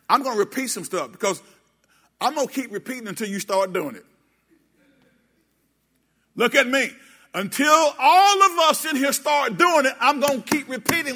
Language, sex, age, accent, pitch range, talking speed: English, male, 50-69, American, 200-270 Hz, 185 wpm